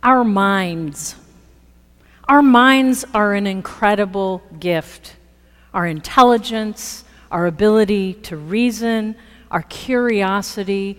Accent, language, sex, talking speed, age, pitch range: American, English, female, 85 wpm, 50-69, 175-235 Hz